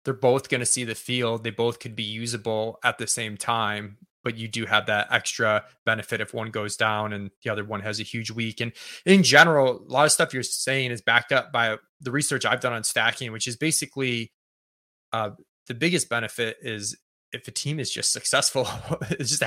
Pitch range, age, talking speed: 110-130 Hz, 20-39, 215 wpm